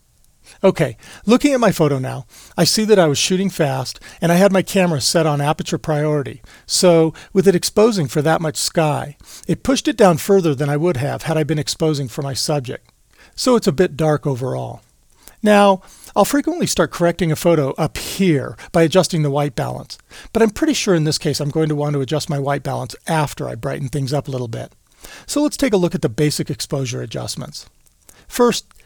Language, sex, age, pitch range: English, male, 40-59, 145-195 Hz